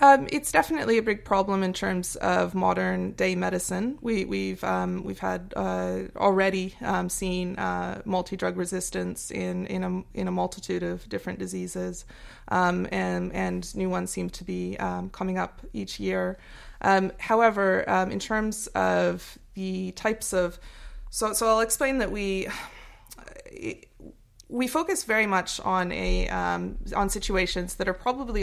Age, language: 20-39, English